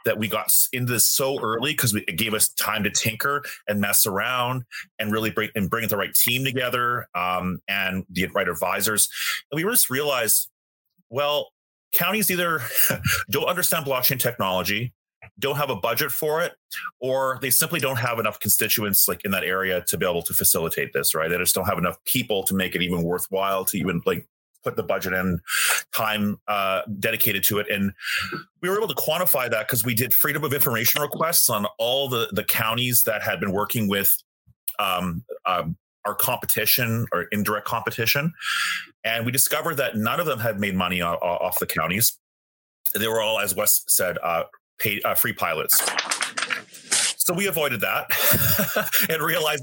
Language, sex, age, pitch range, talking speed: English, male, 30-49, 95-125 Hz, 180 wpm